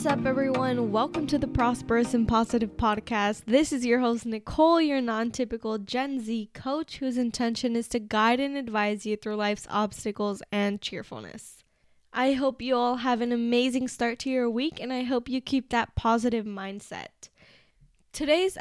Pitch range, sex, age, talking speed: 225-260 Hz, female, 10-29, 170 wpm